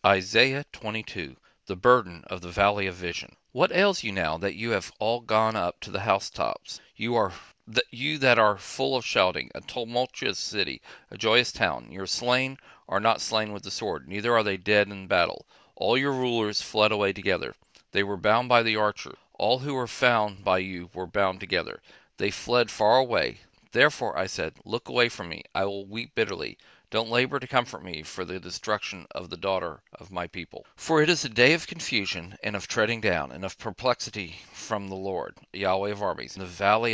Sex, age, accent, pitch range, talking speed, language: male, 40-59, American, 95-125 Hz, 200 wpm, English